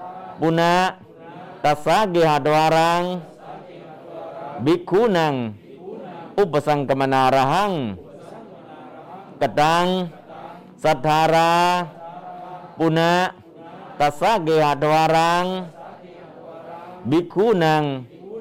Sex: male